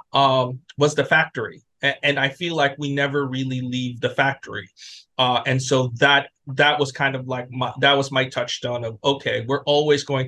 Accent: American